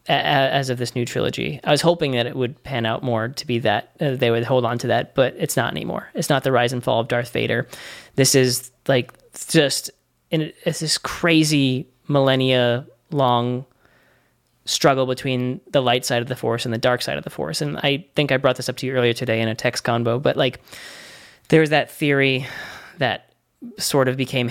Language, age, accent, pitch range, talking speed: English, 20-39, American, 115-135 Hz, 210 wpm